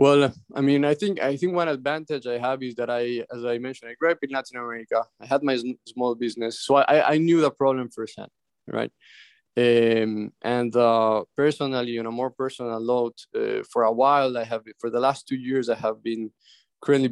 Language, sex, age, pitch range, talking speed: English, male, 20-39, 115-135 Hz, 210 wpm